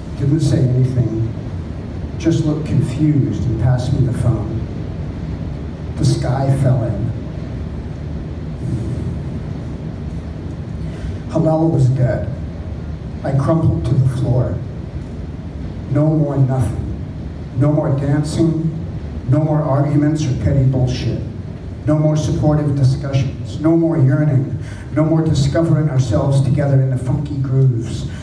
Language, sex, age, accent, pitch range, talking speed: English, male, 50-69, American, 115-150 Hz, 110 wpm